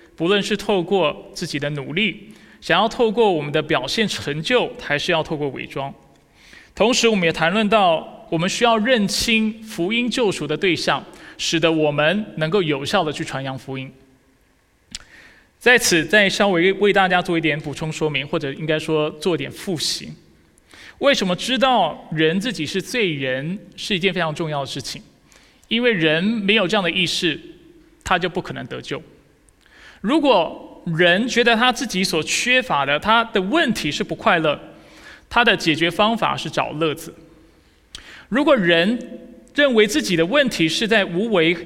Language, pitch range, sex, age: Chinese, 160-230 Hz, male, 20-39